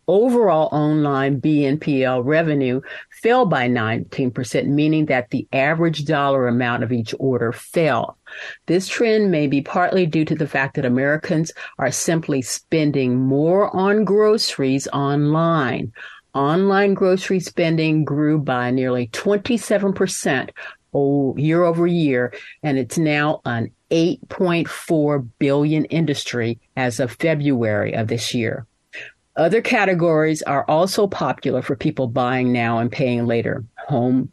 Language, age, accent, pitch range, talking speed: English, 50-69, American, 130-160 Hz, 125 wpm